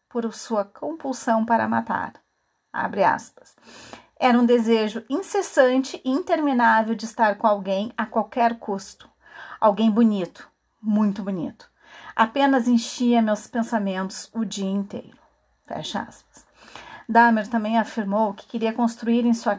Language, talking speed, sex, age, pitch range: Portuguese, 125 wpm, female, 40-59, 210-245 Hz